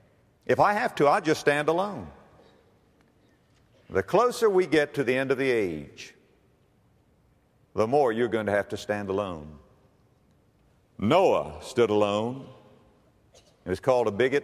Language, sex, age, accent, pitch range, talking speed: English, male, 50-69, American, 100-130 Hz, 145 wpm